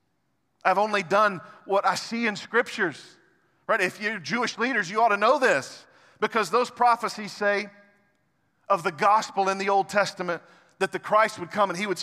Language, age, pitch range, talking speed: English, 40-59, 160-205 Hz, 185 wpm